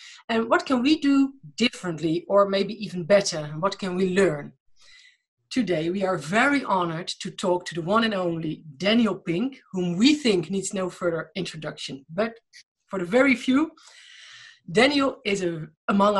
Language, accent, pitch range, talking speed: English, Dutch, 175-235 Hz, 160 wpm